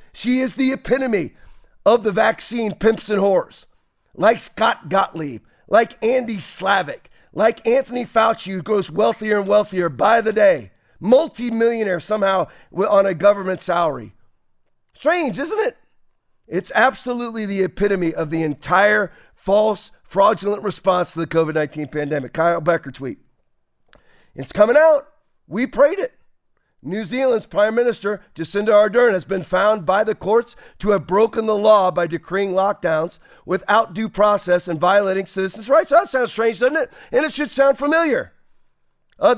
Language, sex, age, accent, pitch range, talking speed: English, male, 40-59, American, 195-265 Hz, 150 wpm